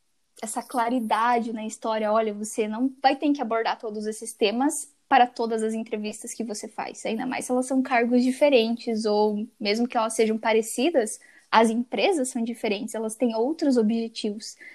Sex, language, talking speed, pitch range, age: female, Portuguese, 170 wpm, 235-290 Hz, 10-29